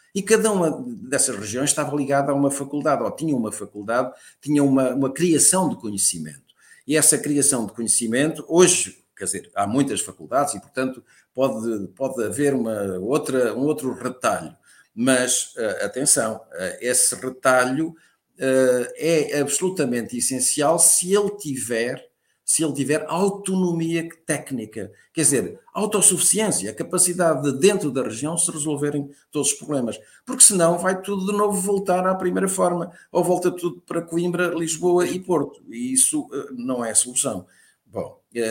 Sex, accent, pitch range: male, Portuguese, 125-180 Hz